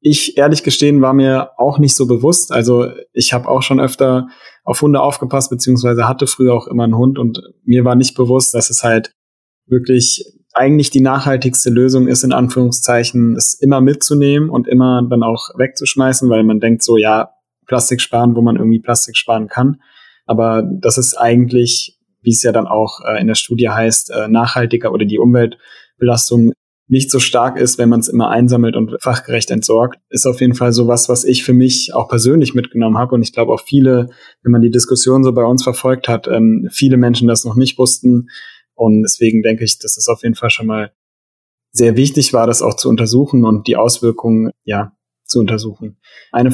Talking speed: 190 wpm